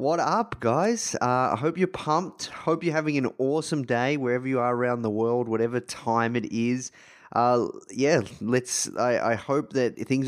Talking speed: 185 wpm